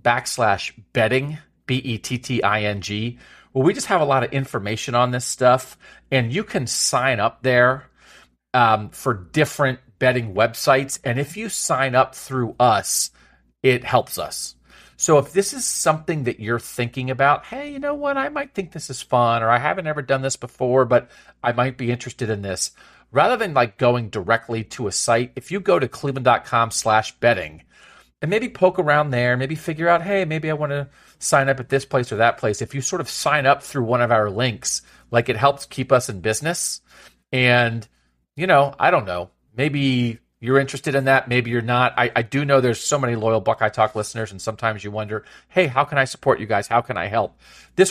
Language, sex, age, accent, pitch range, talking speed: English, male, 40-59, American, 115-145 Hz, 205 wpm